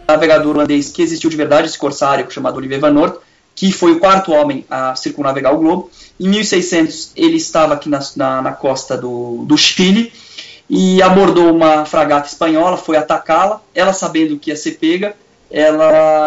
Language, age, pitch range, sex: Portuguese, 20-39, 145-220 Hz, male